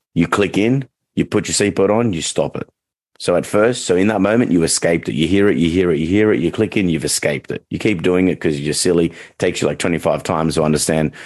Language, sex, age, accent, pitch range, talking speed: English, male, 40-59, Australian, 80-100 Hz, 270 wpm